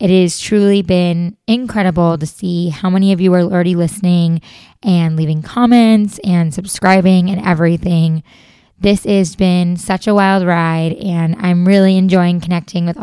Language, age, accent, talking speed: English, 20-39, American, 155 wpm